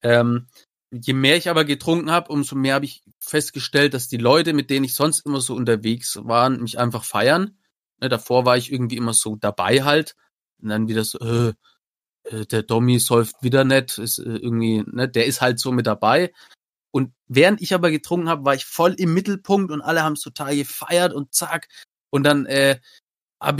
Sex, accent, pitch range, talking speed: male, German, 125-160 Hz, 190 wpm